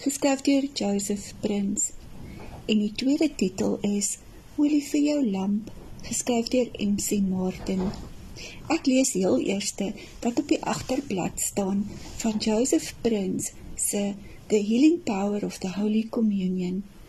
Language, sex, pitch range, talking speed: Dutch, female, 200-250 Hz, 130 wpm